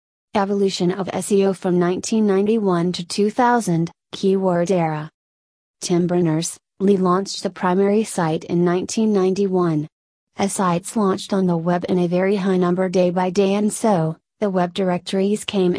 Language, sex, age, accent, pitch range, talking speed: English, female, 30-49, American, 175-200 Hz, 145 wpm